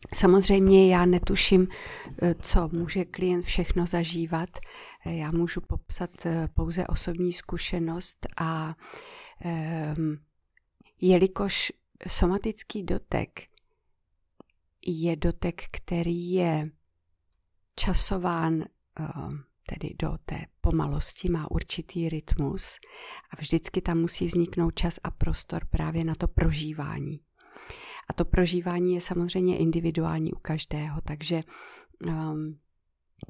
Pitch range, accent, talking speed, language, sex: 155-180 Hz, native, 90 wpm, Czech, female